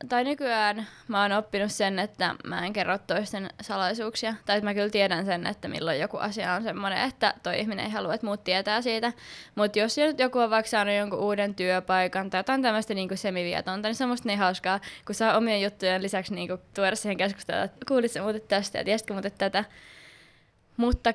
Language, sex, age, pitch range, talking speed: Finnish, female, 20-39, 195-225 Hz, 190 wpm